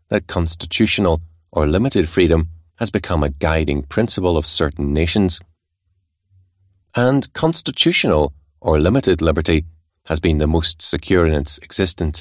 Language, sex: English, male